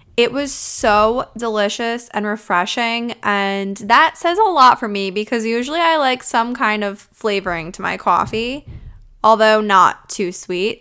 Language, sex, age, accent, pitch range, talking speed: English, female, 10-29, American, 205-245 Hz, 155 wpm